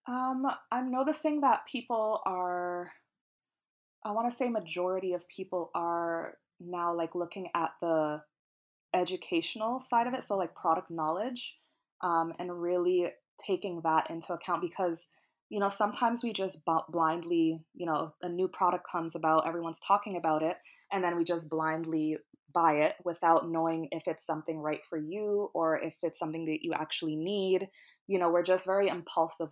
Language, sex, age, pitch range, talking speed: English, female, 20-39, 160-185 Hz, 165 wpm